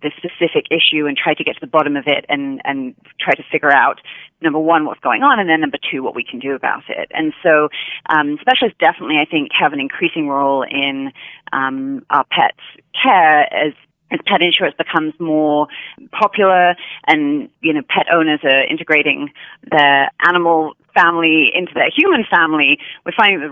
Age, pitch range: 30-49, 145-195 Hz